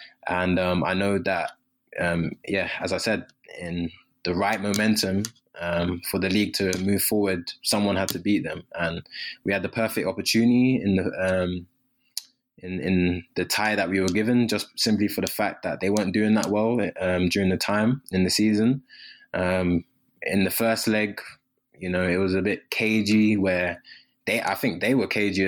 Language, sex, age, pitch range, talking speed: English, male, 20-39, 90-110 Hz, 190 wpm